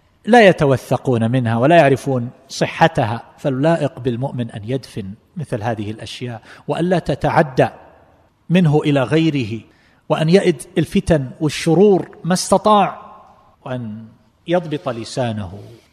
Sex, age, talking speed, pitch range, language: male, 50-69, 105 wpm, 120-150 Hz, Arabic